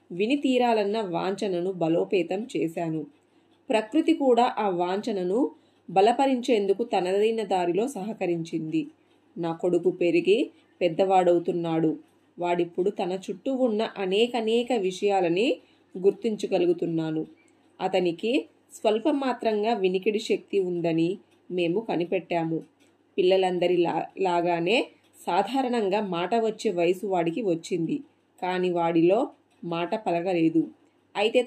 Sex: female